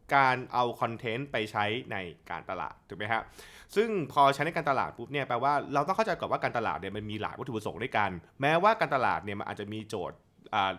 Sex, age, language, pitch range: male, 20-39, Thai, 110-145 Hz